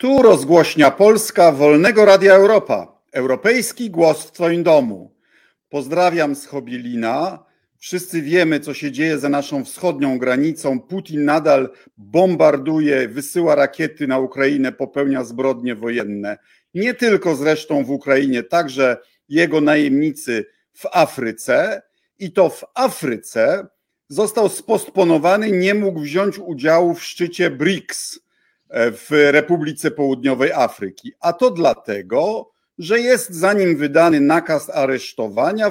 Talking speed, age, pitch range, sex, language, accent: 115 wpm, 50-69, 140-200 Hz, male, Polish, native